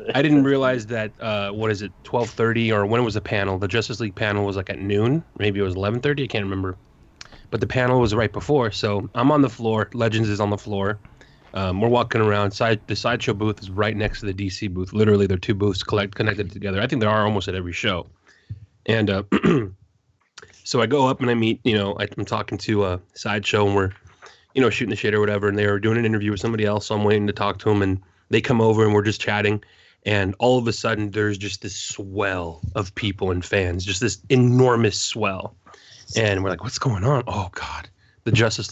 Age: 30-49